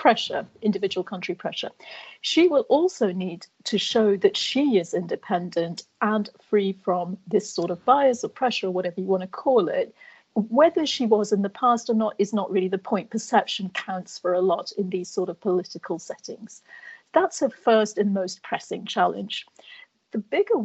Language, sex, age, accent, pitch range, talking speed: English, female, 40-59, British, 190-245 Hz, 180 wpm